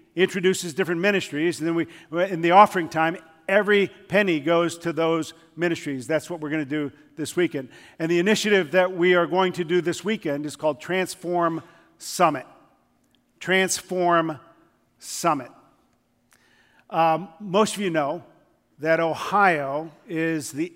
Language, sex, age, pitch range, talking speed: English, male, 50-69, 160-200 Hz, 145 wpm